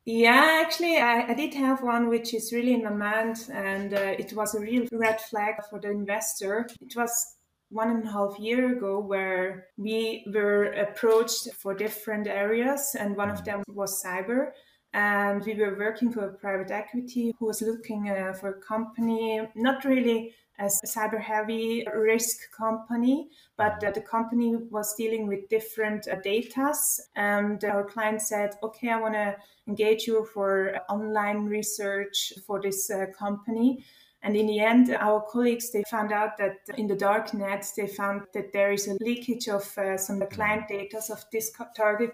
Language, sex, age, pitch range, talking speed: English, female, 20-39, 205-230 Hz, 170 wpm